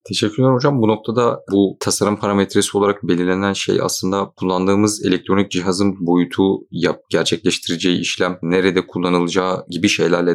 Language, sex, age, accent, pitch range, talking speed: Turkish, male, 30-49, native, 85-100 Hz, 130 wpm